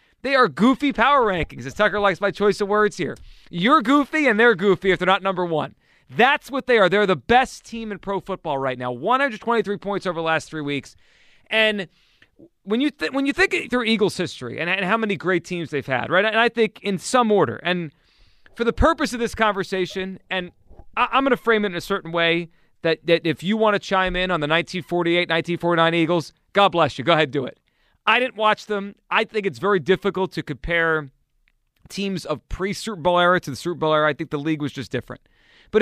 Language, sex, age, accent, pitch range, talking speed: English, male, 30-49, American, 160-215 Hz, 225 wpm